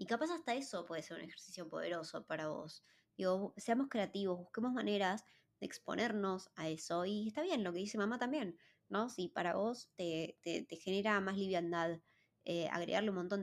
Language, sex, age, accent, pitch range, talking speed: Spanish, male, 20-39, Argentinian, 180-230 Hz, 190 wpm